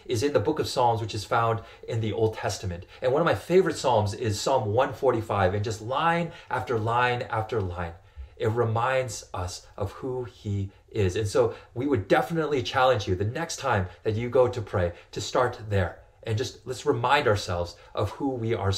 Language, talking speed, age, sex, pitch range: English, 200 wpm, 30-49, male, 100-130 Hz